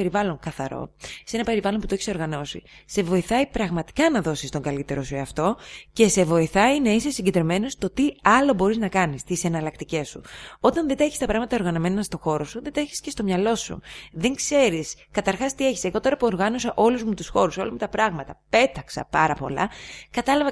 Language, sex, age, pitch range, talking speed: Greek, female, 20-39, 170-235 Hz, 215 wpm